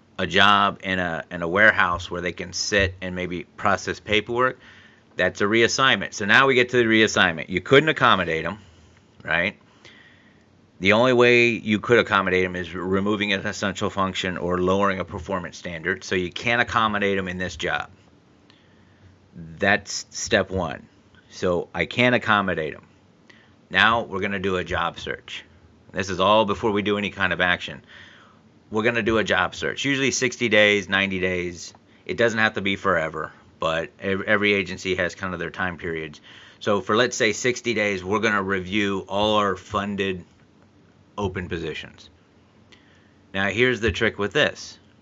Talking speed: 170 wpm